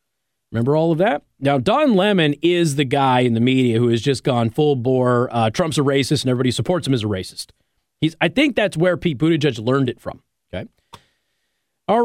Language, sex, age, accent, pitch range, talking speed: English, male, 40-59, American, 125-190 Hz, 210 wpm